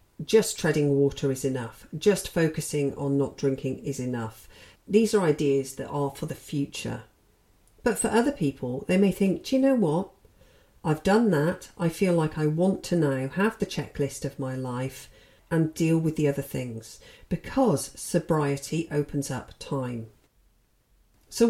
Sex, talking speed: female, 165 wpm